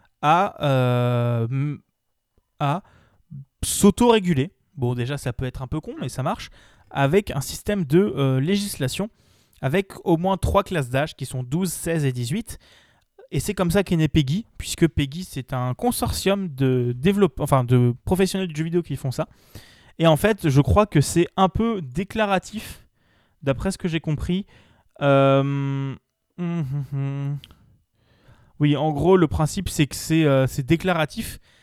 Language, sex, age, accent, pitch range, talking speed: French, male, 20-39, French, 130-185 Hz, 160 wpm